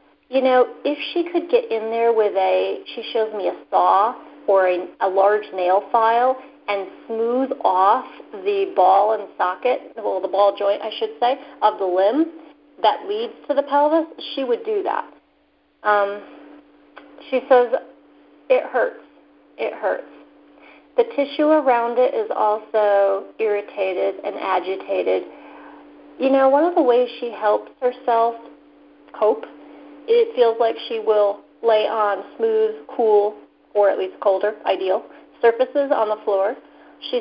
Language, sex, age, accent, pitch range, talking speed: English, female, 40-59, American, 200-275 Hz, 150 wpm